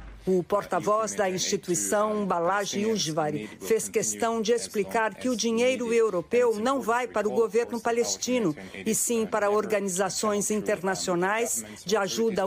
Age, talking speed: 60-79, 130 wpm